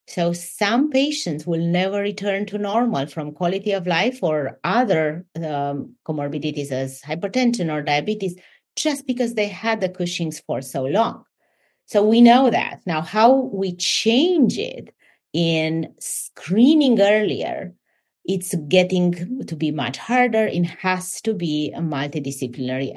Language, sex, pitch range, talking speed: English, female, 160-230 Hz, 140 wpm